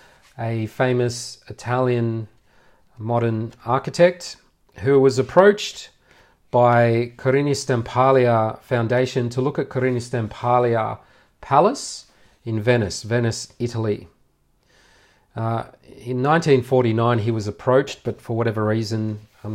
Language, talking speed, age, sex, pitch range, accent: English, 100 wpm, 40-59, male, 110-130 Hz, Australian